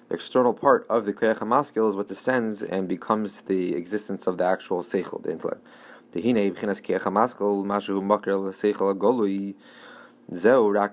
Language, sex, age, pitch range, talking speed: English, male, 20-39, 100-110 Hz, 110 wpm